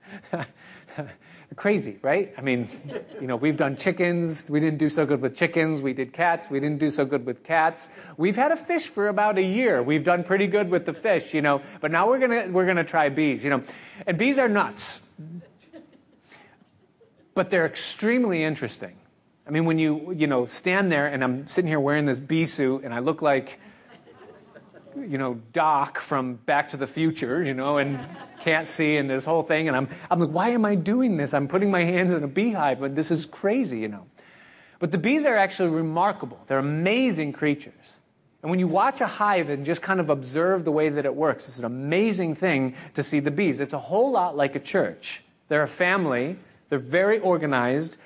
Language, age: English, 40-59